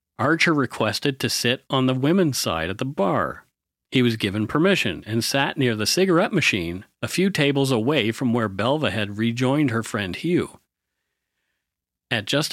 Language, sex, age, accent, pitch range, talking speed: English, male, 40-59, American, 110-150 Hz, 170 wpm